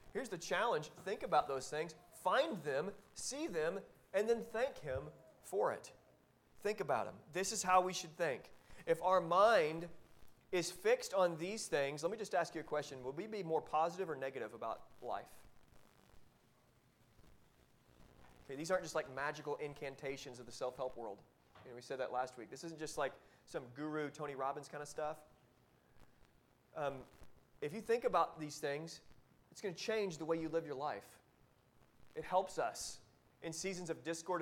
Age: 30-49